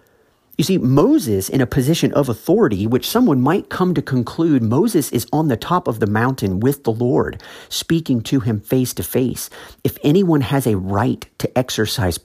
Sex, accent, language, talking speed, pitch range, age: male, American, English, 185 wpm, 105-140 Hz, 40-59